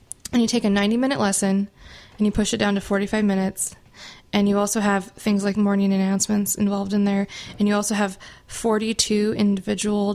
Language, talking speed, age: English, 185 wpm, 20-39